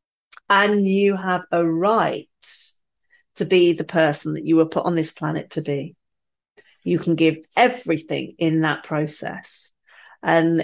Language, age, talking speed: English, 40-59, 145 wpm